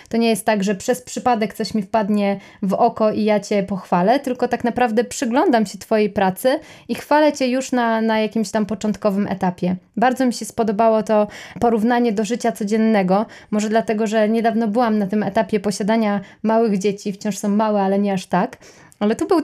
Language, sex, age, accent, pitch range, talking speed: Polish, female, 20-39, native, 205-250 Hz, 195 wpm